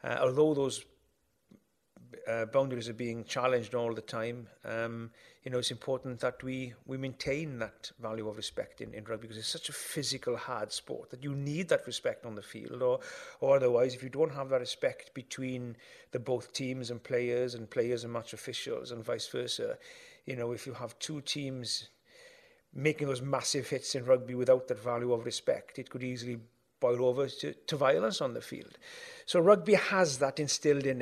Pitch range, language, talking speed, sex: 120-140 Hz, English, 195 wpm, male